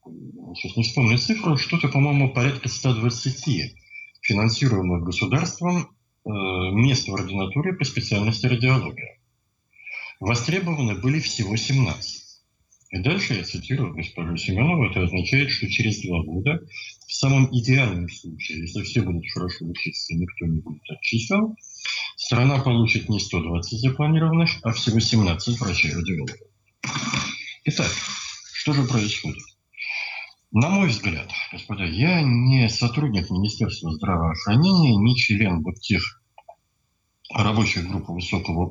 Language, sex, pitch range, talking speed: Russian, male, 95-130 Hz, 120 wpm